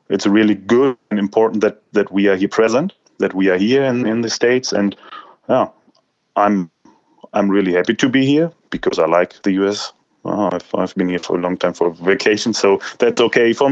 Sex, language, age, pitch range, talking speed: male, English, 30-49, 95-110 Hz, 210 wpm